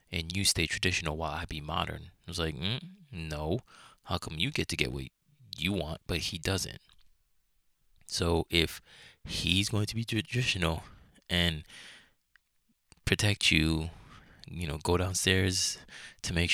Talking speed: 150 wpm